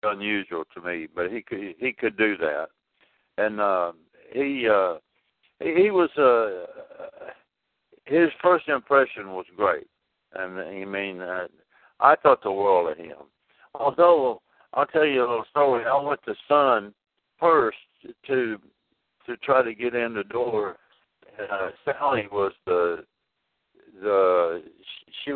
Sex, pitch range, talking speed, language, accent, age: male, 100-145 Hz, 140 wpm, English, American, 60-79